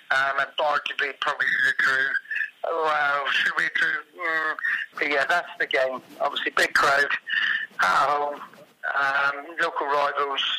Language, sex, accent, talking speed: English, male, British, 155 wpm